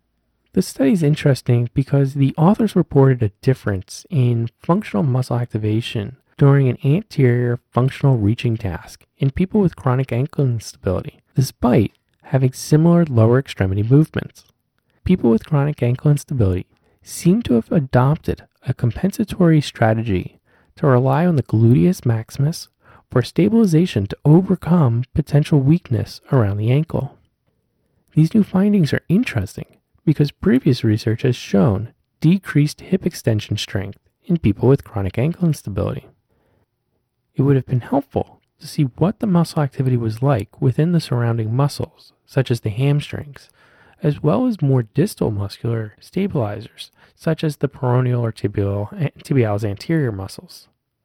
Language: English